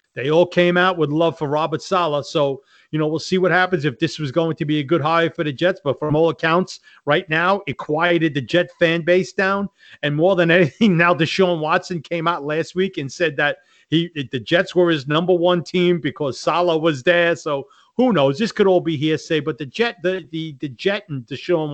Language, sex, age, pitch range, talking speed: English, male, 40-59, 145-175 Hz, 235 wpm